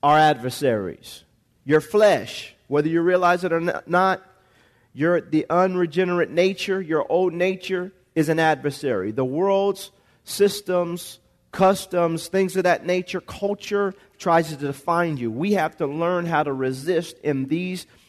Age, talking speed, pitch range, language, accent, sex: 40-59, 140 wpm, 145-185 Hz, English, American, male